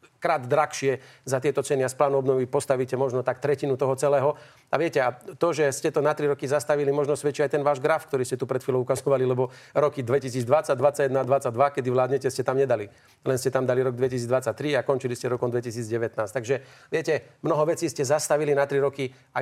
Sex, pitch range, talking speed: male, 130-150 Hz, 215 wpm